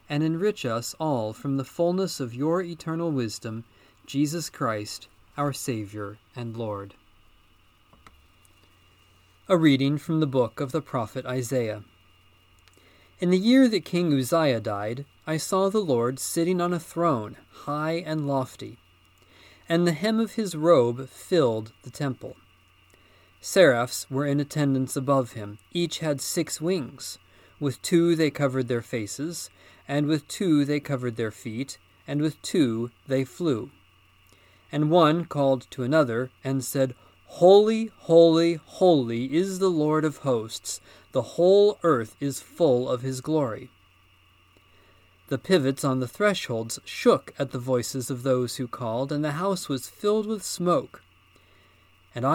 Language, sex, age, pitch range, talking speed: English, male, 40-59, 105-155 Hz, 145 wpm